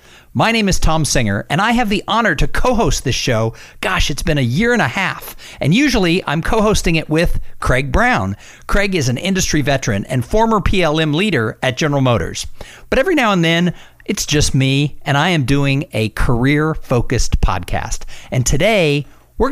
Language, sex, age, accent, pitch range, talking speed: English, male, 50-69, American, 120-185 Hz, 185 wpm